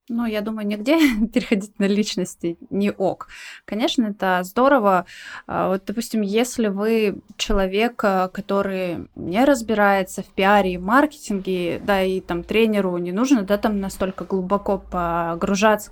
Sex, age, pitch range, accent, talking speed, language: female, 20-39, 185-220 Hz, native, 130 wpm, Russian